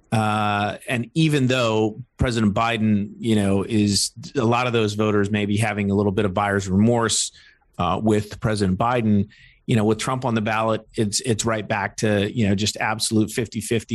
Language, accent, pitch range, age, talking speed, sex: English, American, 105-120 Hz, 40-59, 190 wpm, male